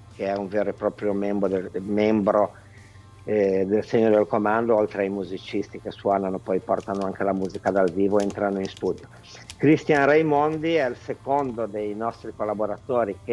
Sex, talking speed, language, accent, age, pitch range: male, 165 wpm, Italian, native, 50-69, 100-115 Hz